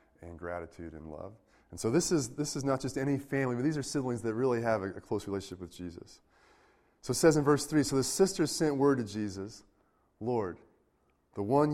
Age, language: 30-49, English